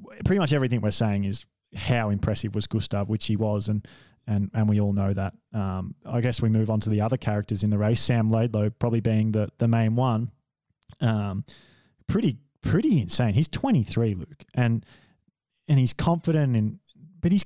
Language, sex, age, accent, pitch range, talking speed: English, male, 20-39, Australian, 110-135 Hz, 195 wpm